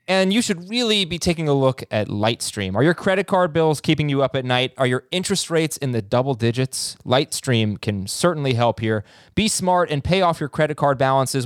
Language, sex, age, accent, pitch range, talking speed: English, male, 20-39, American, 130-175 Hz, 220 wpm